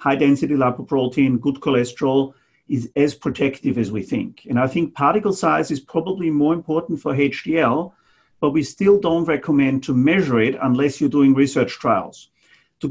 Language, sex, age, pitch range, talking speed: English, male, 50-69, 130-160 Hz, 165 wpm